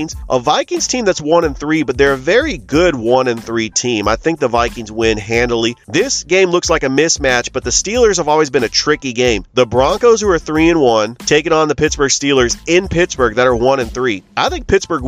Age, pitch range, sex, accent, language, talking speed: 30-49, 115-145 Hz, male, American, English, 240 wpm